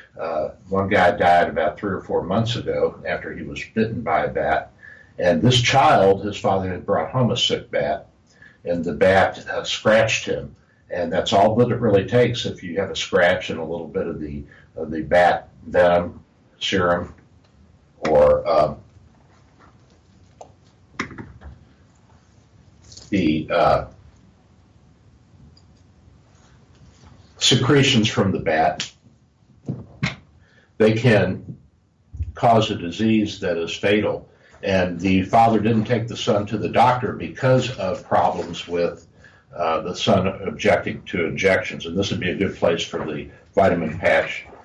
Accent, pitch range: American, 90-115 Hz